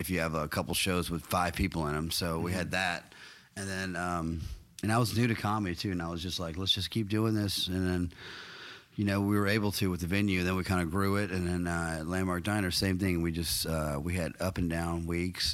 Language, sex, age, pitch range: English, male, 30-49, 80-95 Hz